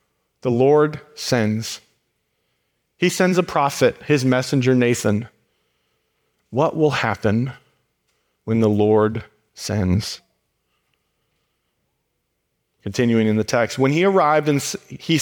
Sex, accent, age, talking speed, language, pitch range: male, American, 40-59, 105 wpm, English, 125-180 Hz